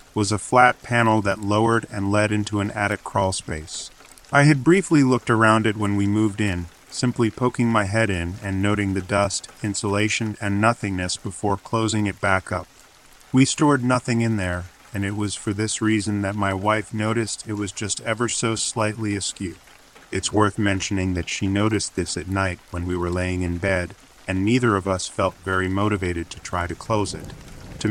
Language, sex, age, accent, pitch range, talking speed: English, male, 30-49, American, 90-110 Hz, 195 wpm